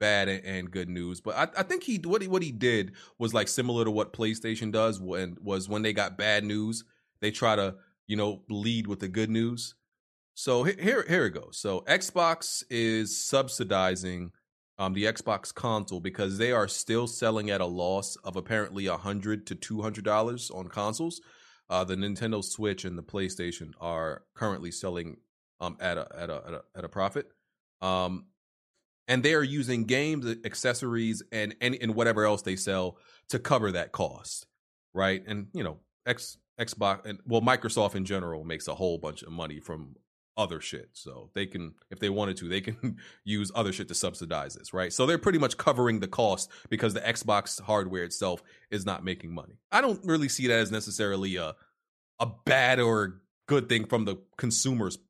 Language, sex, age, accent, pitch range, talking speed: English, male, 30-49, American, 95-115 Hz, 190 wpm